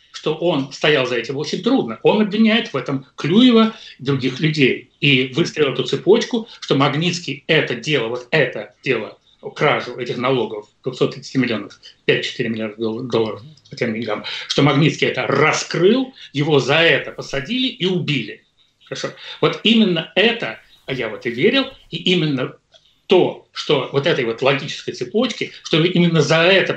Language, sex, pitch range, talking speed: Russian, male, 130-185 Hz, 145 wpm